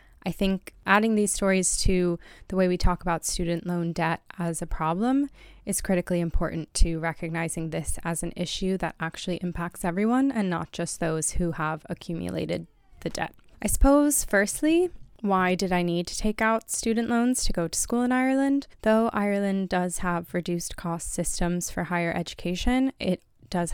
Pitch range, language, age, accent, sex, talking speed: 170-200 Hz, English, 20-39, American, female, 175 wpm